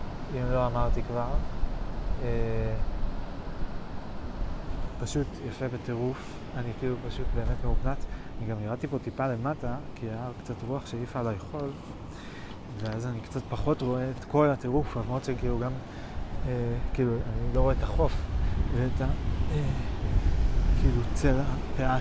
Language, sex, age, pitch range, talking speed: Hebrew, male, 20-39, 105-125 Hz, 135 wpm